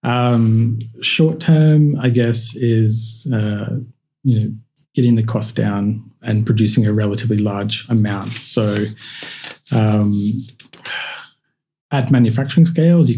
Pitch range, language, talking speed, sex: 105-125 Hz, English, 115 wpm, male